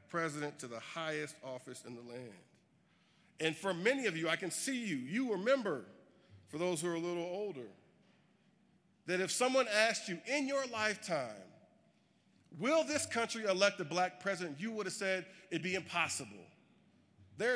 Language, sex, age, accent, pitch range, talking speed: English, male, 50-69, American, 150-205 Hz, 170 wpm